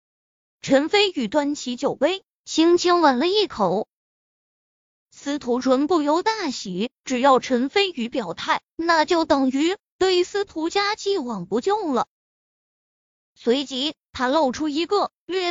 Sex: female